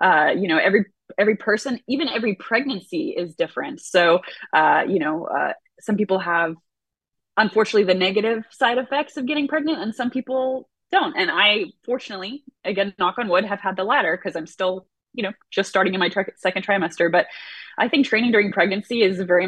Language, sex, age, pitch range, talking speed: English, female, 20-39, 180-250 Hz, 185 wpm